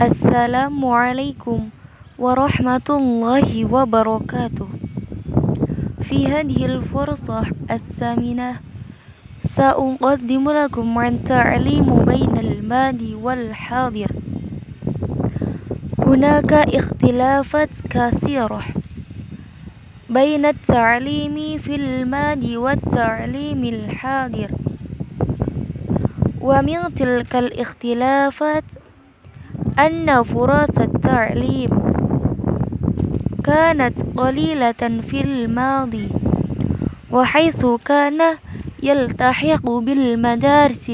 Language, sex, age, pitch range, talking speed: Arabic, female, 20-39, 235-285 Hz, 55 wpm